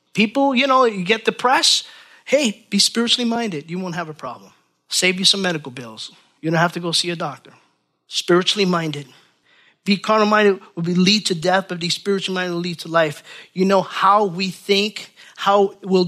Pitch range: 155-200 Hz